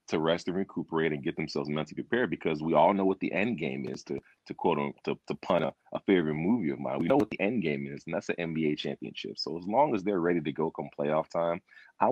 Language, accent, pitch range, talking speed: English, American, 75-100 Hz, 270 wpm